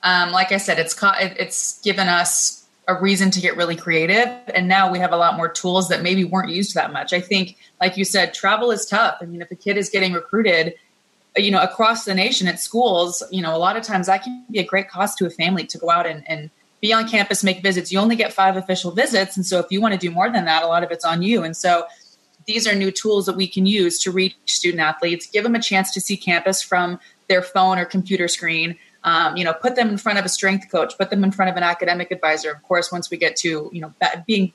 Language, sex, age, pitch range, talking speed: English, female, 20-39, 175-195 Hz, 265 wpm